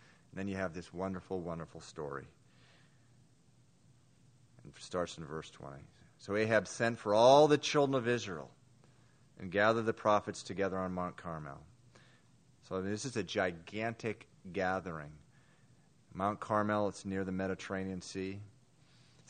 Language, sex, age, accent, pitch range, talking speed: English, male, 30-49, American, 95-130 Hz, 135 wpm